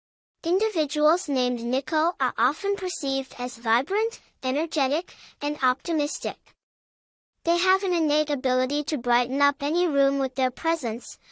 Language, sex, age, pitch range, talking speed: English, male, 10-29, 270-330 Hz, 125 wpm